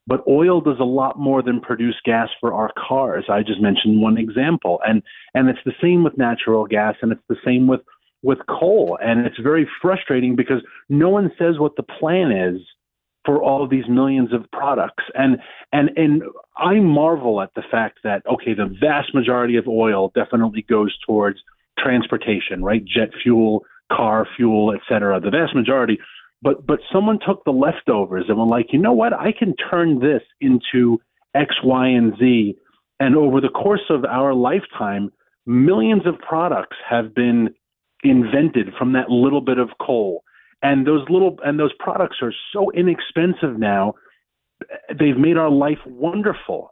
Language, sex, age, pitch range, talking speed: English, male, 40-59, 120-170 Hz, 175 wpm